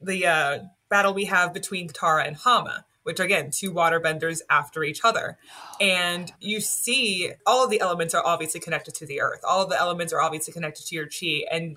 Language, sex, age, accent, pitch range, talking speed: English, female, 20-39, American, 165-195 Hz, 205 wpm